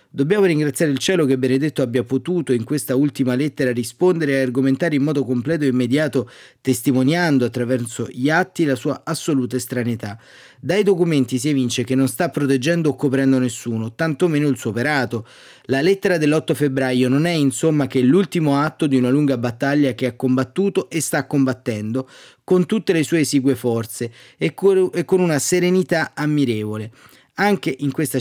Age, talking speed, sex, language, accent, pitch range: 30-49, 165 wpm, male, Italian, native, 130-155 Hz